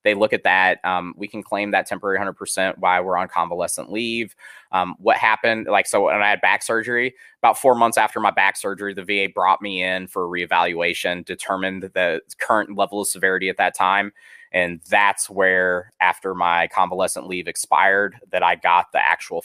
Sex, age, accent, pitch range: male, 20-39, American, 95-135 Hz